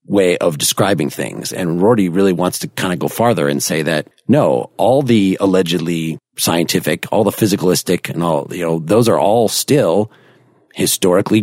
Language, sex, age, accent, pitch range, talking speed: English, male, 40-59, American, 85-110 Hz, 175 wpm